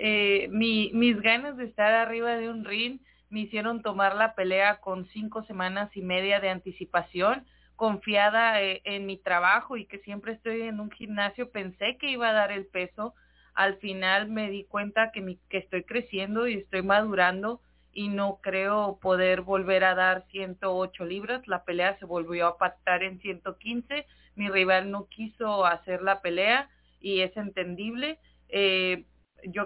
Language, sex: English, female